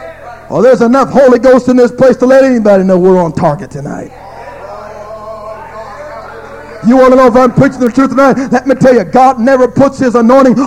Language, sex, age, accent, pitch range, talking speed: English, male, 50-69, American, 235-270 Hz, 195 wpm